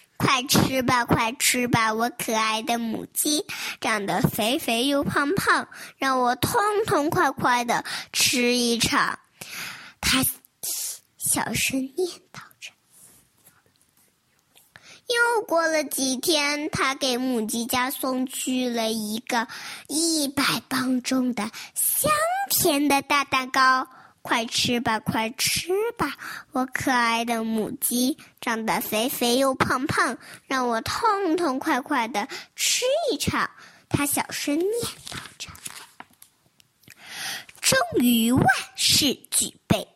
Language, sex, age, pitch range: Chinese, male, 20-39, 230-295 Hz